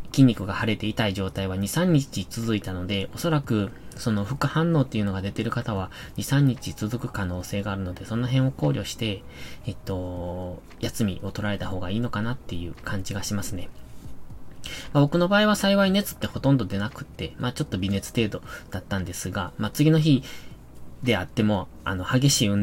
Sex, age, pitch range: male, 20-39, 100-135 Hz